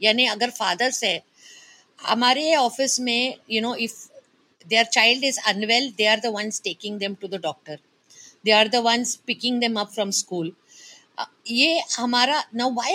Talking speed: 125 wpm